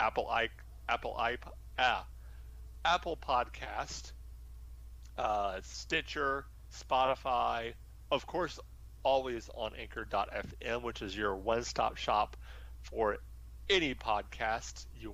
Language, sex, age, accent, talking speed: English, male, 40-59, American, 95 wpm